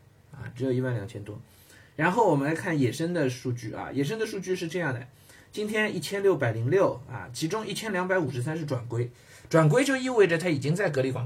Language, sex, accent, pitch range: Chinese, male, native, 120-155 Hz